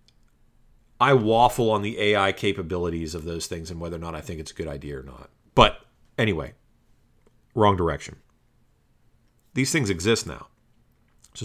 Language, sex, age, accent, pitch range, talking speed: English, male, 40-59, American, 100-125 Hz, 155 wpm